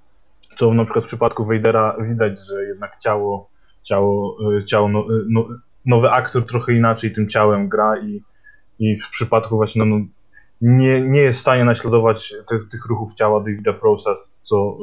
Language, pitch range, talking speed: Polish, 105-130 Hz, 165 wpm